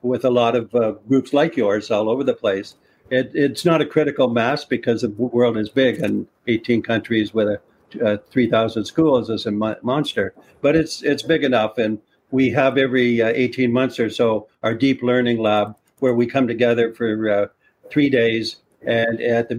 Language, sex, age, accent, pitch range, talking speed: English, male, 60-79, American, 110-130 Hz, 195 wpm